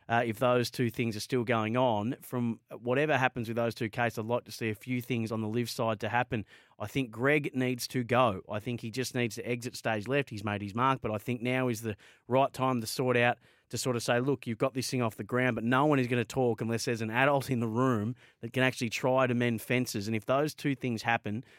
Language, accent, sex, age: English, Australian, male, 30-49